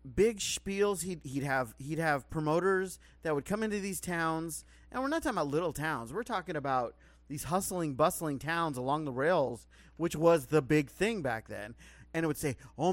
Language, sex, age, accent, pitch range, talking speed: English, male, 30-49, American, 125-180 Hz, 200 wpm